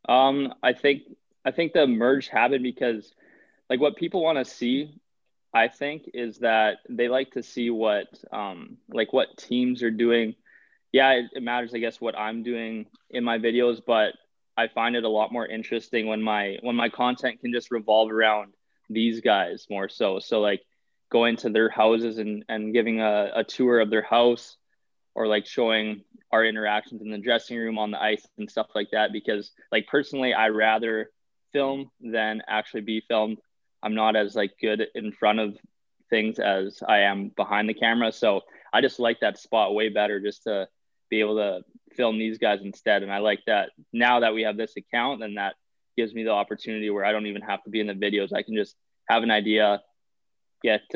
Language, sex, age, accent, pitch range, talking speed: English, male, 20-39, American, 105-120 Hz, 200 wpm